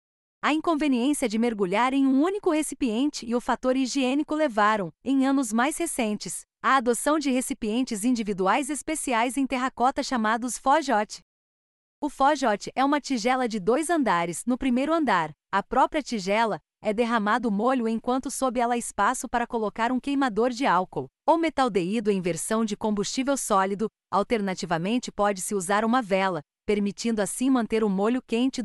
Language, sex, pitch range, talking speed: Portuguese, female, 210-265 Hz, 150 wpm